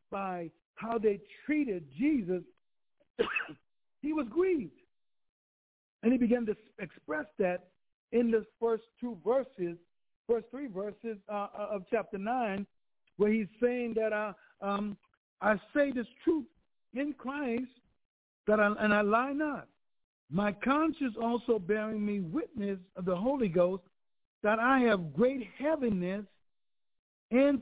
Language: English